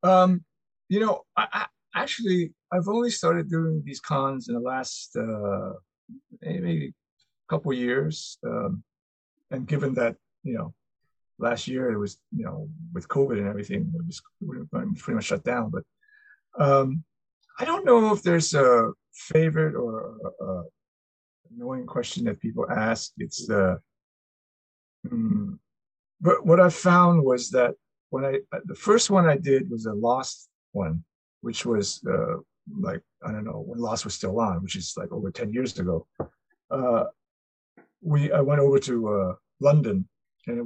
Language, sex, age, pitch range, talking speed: English, male, 50-69, 115-180 Hz, 160 wpm